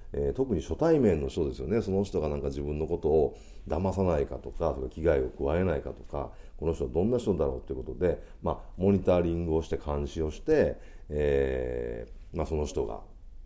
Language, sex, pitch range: Japanese, male, 70-105 Hz